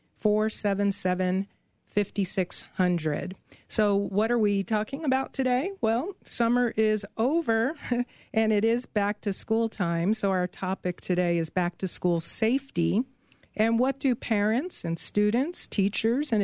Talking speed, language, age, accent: 130 wpm, English, 50-69, American